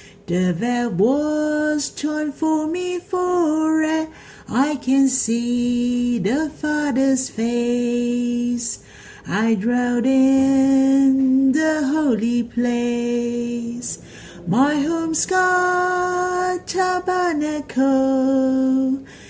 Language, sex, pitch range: Chinese, female, 240-310 Hz